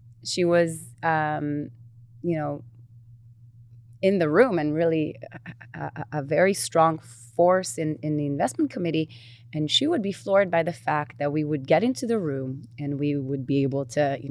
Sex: female